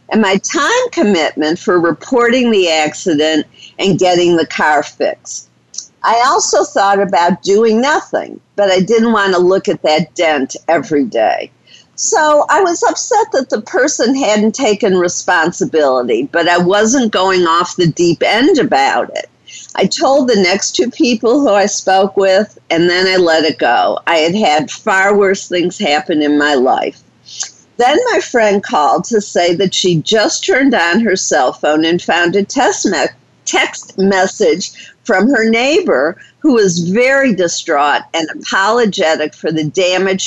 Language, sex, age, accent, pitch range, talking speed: English, female, 50-69, American, 180-245 Hz, 160 wpm